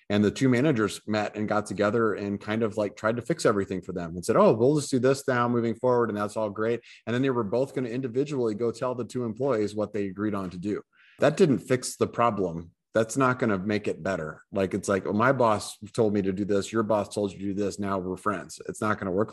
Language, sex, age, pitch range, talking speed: English, male, 30-49, 100-120 Hz, 265 wpm